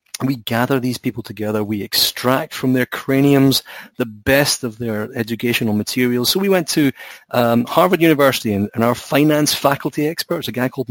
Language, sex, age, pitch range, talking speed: English, male, 30-49, 110-140 Hz, 175 wpm